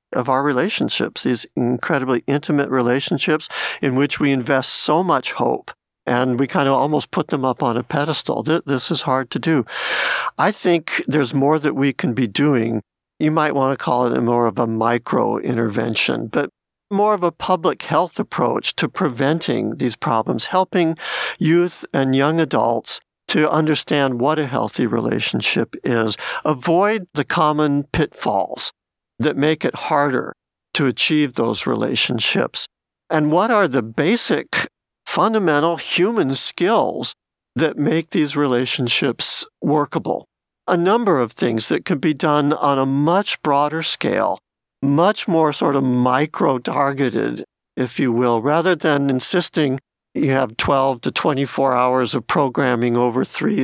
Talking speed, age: 145 wpm, 50-69